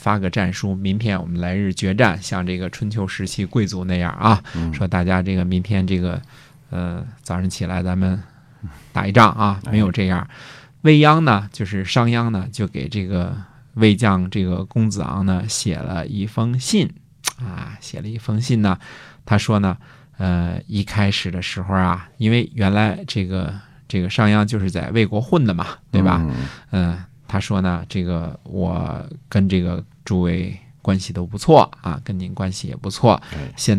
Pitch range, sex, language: 95-120 Hz, male, Chinese